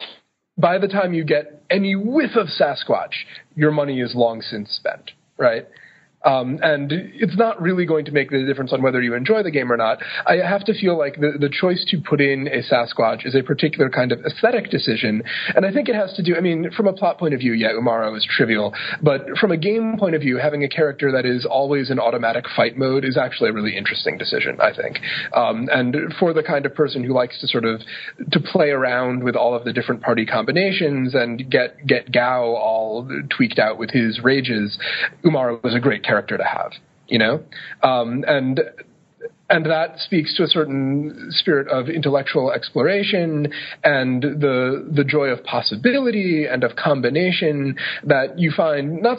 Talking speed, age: 200 wpm, 30-49